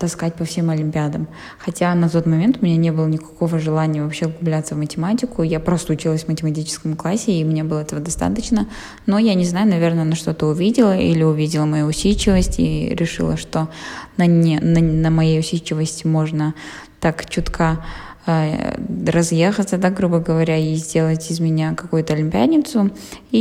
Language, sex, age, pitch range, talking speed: Russian, female, 20-39, 160-185 Hz, 160 wpm